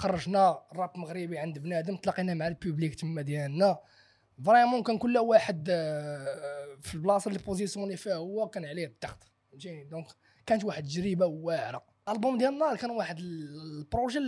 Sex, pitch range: male, 160-225 Hz